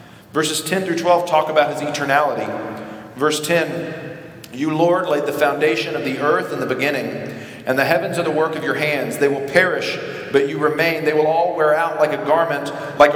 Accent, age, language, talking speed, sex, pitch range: American, 40-59, English, 205 wpm, male, 145-180 Hz